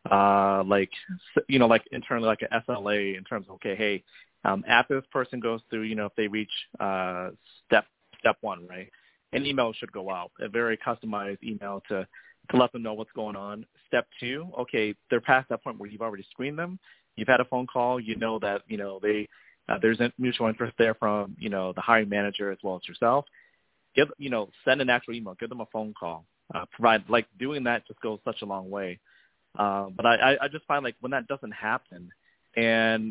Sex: male